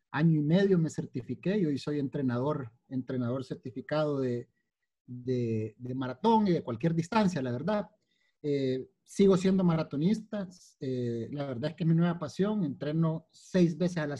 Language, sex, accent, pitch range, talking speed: Spanish, male, Mexican, 135-175 Hz, 170 wpm